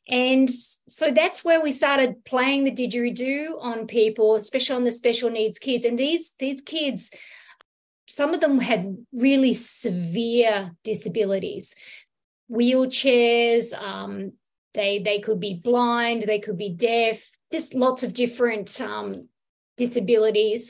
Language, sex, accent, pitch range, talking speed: English, female, Australian, 220-260 Hz, 130 wpm